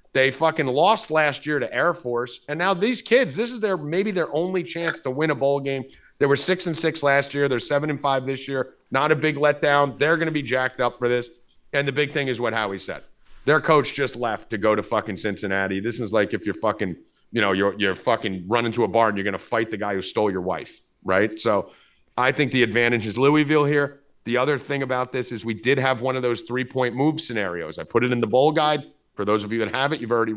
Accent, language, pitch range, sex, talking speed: American, English, 120-155 Hz, male, 265 wpm